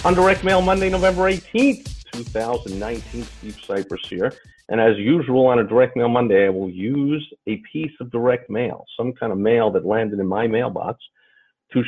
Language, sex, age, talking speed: English, male, 50-69, 180 wpm